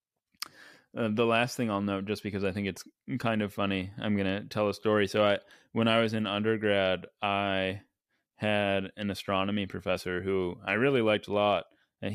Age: 20-39